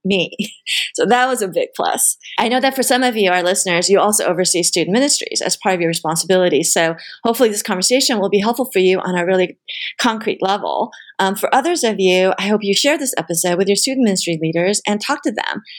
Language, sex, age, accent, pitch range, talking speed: English, female, 30-49, American, 185-245 Hz, 230 wpm